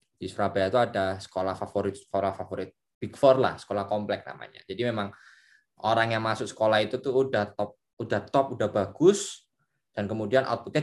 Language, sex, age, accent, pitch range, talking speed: Indonesian, male, 20-39, native, 100-140 Hz, 170 wpm